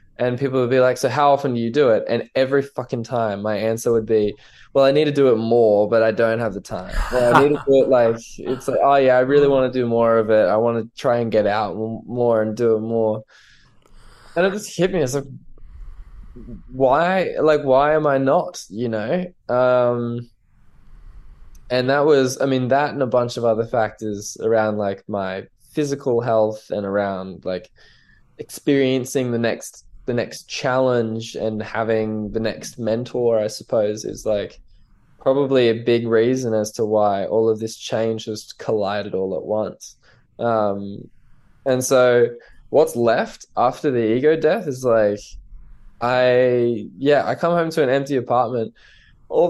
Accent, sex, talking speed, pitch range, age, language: Australian, male, 185 wpm, 110-130 Hz, 20-39, English